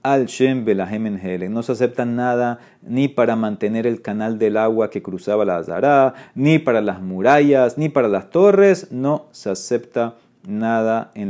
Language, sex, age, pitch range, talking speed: Spanish, male, 30-49, 110-135 Hz, 165 wpm